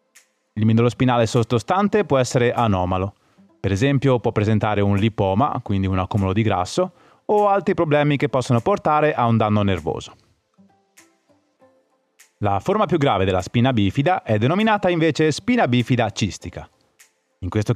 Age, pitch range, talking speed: 30-49, 105-145 Hz, 145 wpm